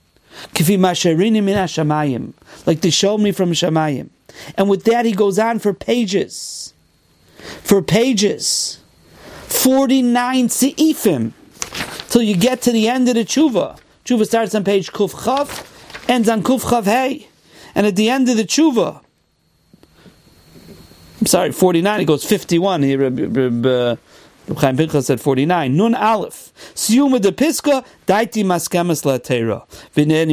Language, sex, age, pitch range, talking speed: English, male, 40-59, 180-255 Hz, 120 wpm